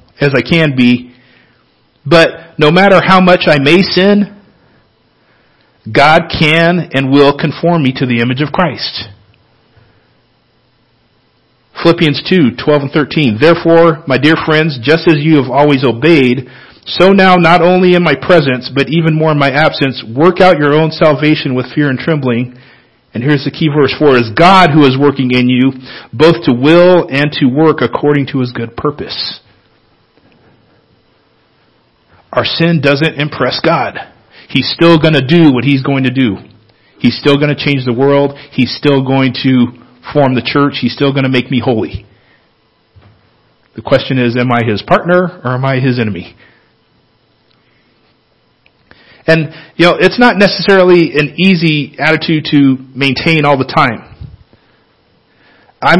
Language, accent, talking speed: English, American, 160 wpm